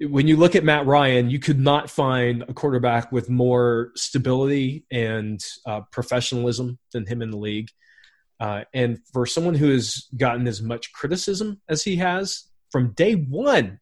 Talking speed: 170 wpm